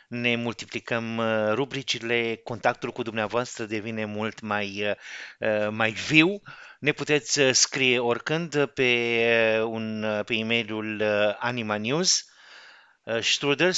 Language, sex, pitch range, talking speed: Romanian, male, 110-135 Hz, 95 wpm